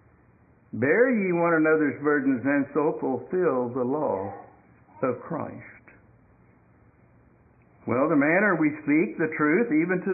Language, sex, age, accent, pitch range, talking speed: English, male, 60-79, American, 155-210 Hz, 125 wpm